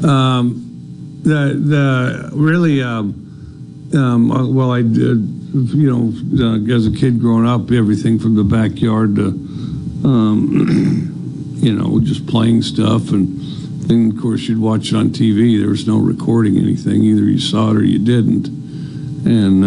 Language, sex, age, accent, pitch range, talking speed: English, male, 60-79, American, 105-125 Hz, 150 wpm